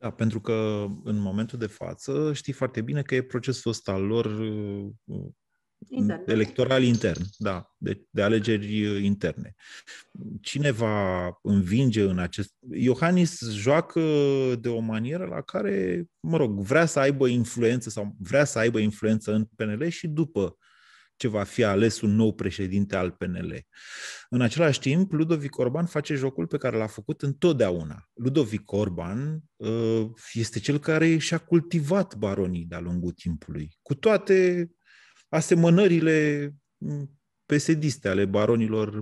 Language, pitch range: Romanian, 105-145 Hz